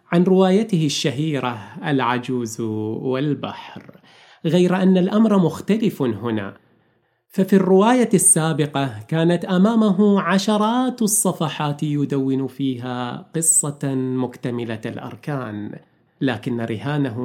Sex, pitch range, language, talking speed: male, 120-165 Hz, Arabic, 85 wpm